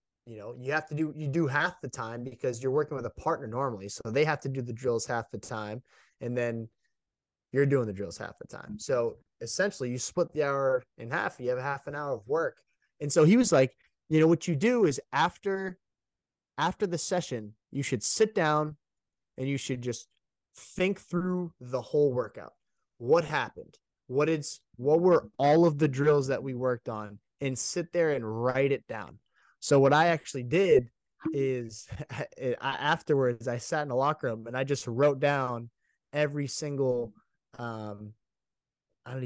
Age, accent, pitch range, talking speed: 20-39, American, 120-155 Hz, 190 wpm